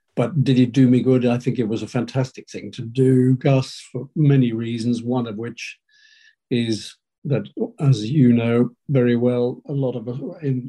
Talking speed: 190 wpm